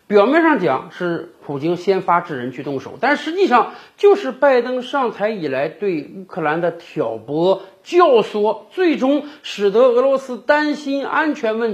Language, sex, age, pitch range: Chinese, male, 50-69, 175-290 Hz